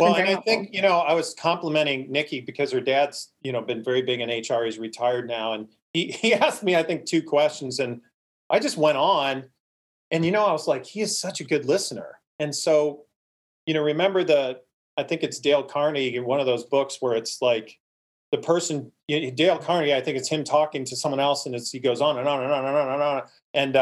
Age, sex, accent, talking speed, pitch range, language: 30-49, male, American, 245 wpm, 130-165 Hz, English